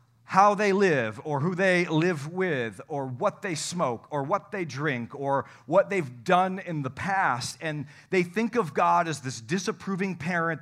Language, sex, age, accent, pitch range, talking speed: English, male, 40-59, American, 140-185 Hz, 180 wpm